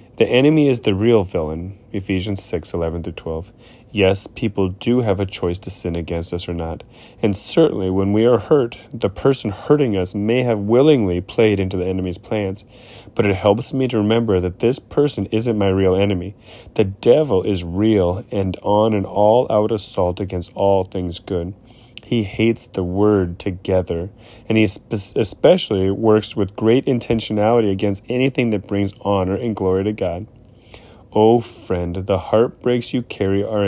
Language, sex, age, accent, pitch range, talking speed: English, male, 30-49, American, 95-115 Hz, 170 wpm